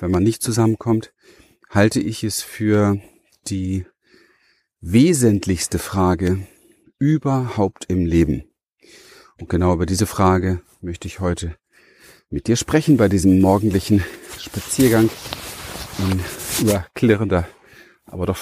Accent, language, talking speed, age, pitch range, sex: German, German, 110 wpm, 40-59, 95-115 Hz, male